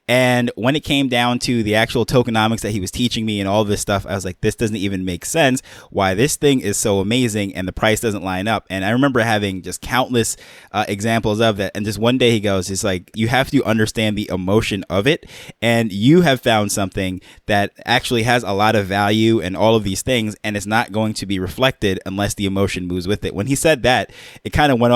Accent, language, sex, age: American, English, male, 20-39